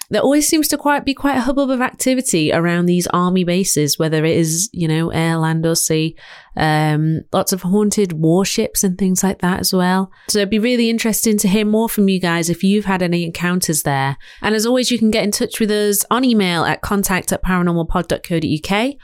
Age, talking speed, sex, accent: 30-49, 215 wpm, female, British